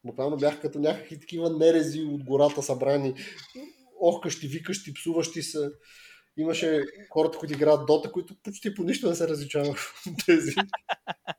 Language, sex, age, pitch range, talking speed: Bulgarian, male, 20-39, 130-165 Hz, 150 wpm